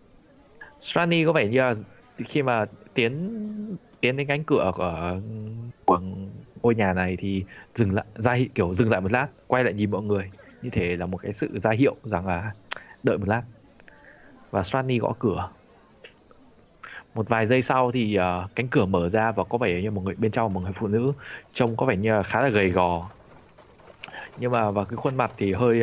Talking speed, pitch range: 205 wpm, 100-125 Hz